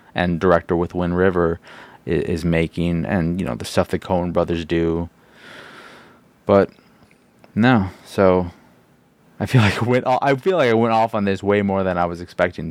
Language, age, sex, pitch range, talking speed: English, 20-39, male, 90-140 Hz, 185 wpm